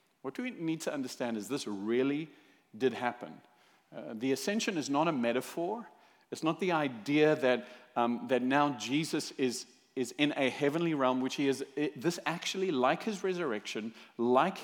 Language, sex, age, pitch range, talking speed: English, male, 50-69, 125-185 Hz, 170 wpm